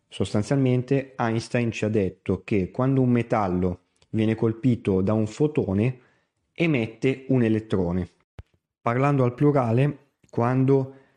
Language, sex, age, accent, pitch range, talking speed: Italian, male, 30-49, native, 105-125 Hz, 115 wpm